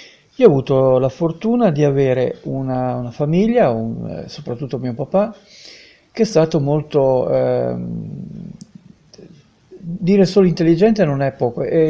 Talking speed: 130 wpm